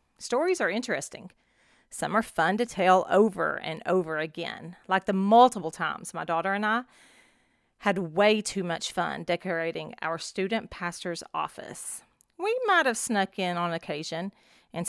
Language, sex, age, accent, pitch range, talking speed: English, female, 40-59, American, 175-225 Hz, 155 wpm